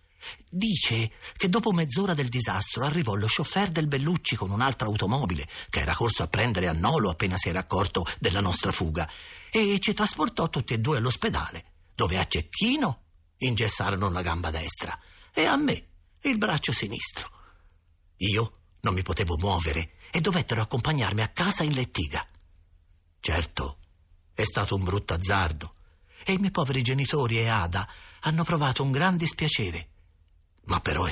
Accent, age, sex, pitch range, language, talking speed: native, 50-69, male, 85-135 Hz, Italian, 155 wpm